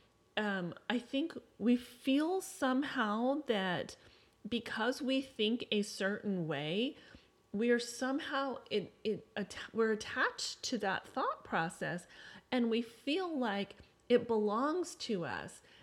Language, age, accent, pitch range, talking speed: English, 30-49, American, 185-240 Hz, 125 wpm